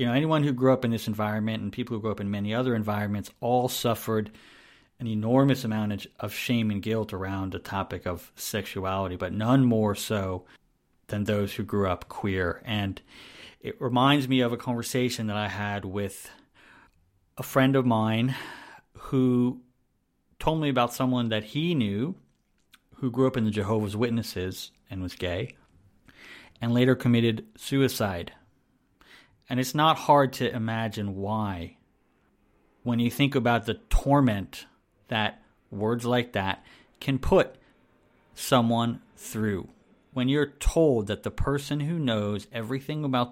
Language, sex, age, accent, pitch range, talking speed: English, male, 40-59, American, 100-130 Hz, 150 wpm